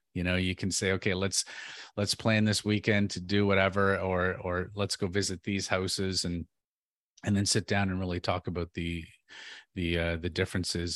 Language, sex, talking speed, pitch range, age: English, male, 190 wpm, 90-105 Hz, 30-49